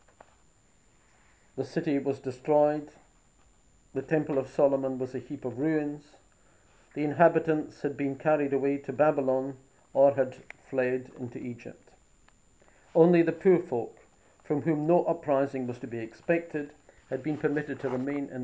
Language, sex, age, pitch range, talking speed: English, male, 50-69, 130-170 Hz, 145 wpm